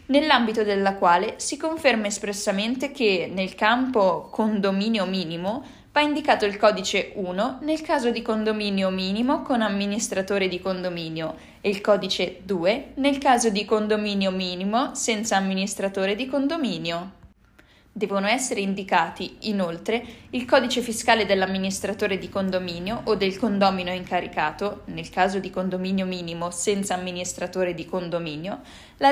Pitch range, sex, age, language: 185-235 Hz, female, 20-39, Italian